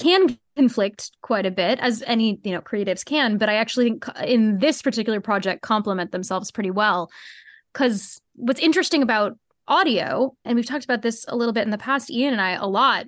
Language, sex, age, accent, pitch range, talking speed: English, female, 10-29, American, 210-260 Hz, 200 wpm